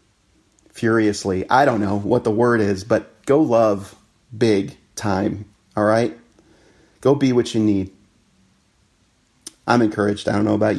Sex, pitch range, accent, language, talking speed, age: male, 110-140 Hz, American, English, 145 wpm, 40-59